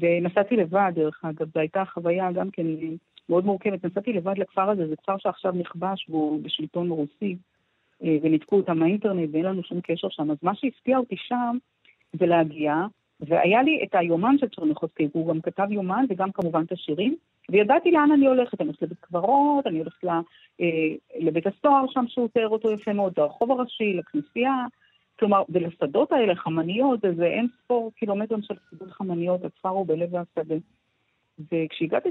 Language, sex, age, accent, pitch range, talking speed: Hebrew, female, 40-59, native, 165-220 Hz, 165 wpm